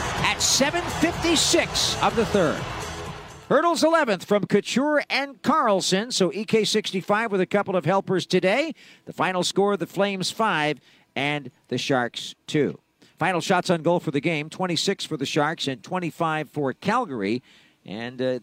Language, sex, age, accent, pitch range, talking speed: English, male, 50-69, American, 145-200 Hz, 150 wpm